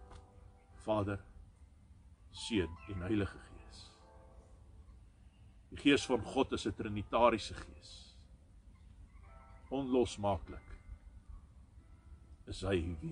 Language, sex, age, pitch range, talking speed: English, male, 50-69, 85-100 Hz, 80 wpm